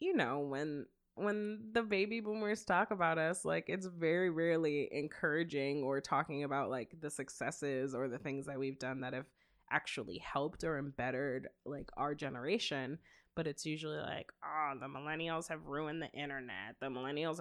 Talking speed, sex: 170 wpm, female